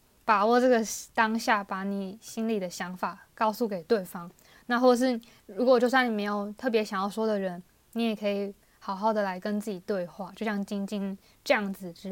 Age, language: 20-39, Chinese